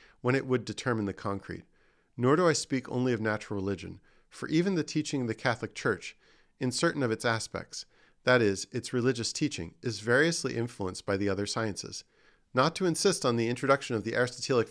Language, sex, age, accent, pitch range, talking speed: English, male, 40-59, American, 105-135 Hz, 195 wpm